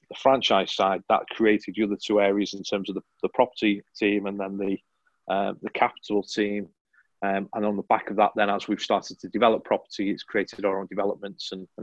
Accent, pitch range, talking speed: British, 100-110 Hz, 220 wpm